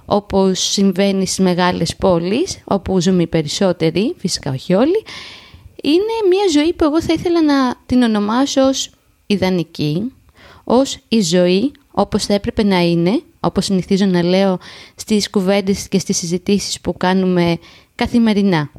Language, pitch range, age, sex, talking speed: Greek, 180-240 Hz, 20-39, female, 140 wpm